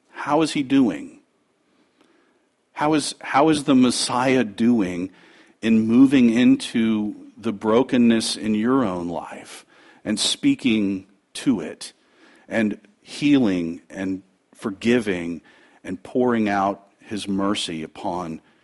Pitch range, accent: 100-140 Hz, American